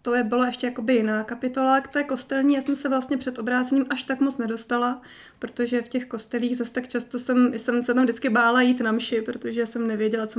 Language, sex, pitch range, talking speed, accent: Czech, female, 225-255 Hz, 225 wpm, native